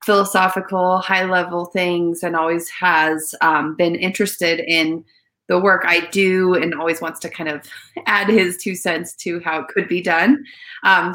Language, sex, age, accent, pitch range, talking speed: English, female, 30-49, American, 170-220 Hz, 170 wpm